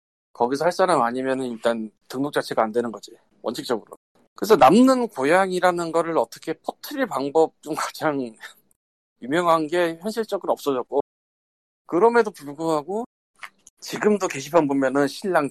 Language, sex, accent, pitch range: Korean, male, native, 125-195 Hz